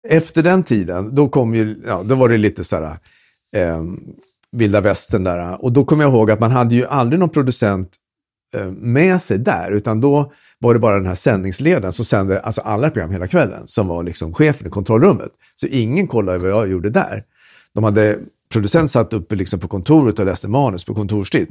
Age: 50-69